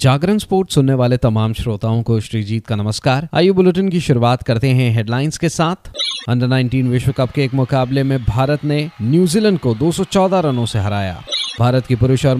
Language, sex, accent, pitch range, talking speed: Hindi, male, native, 120-155 Hz, 190 wpm